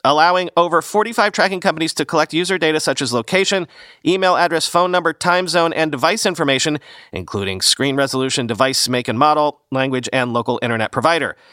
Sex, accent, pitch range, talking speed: male, American, 125-170 Hz, 170 wpm